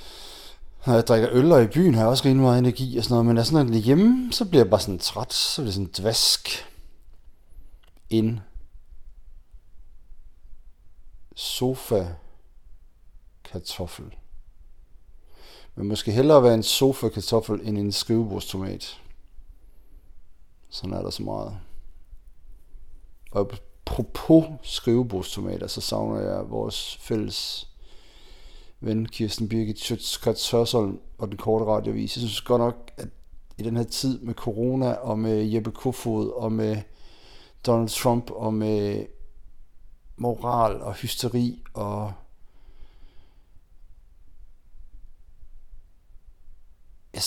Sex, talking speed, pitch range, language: male, 115 wpm, 85-115 Hz, Danish